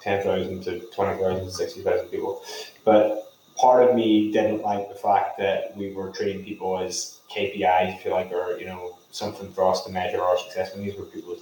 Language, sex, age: English, male, 20-39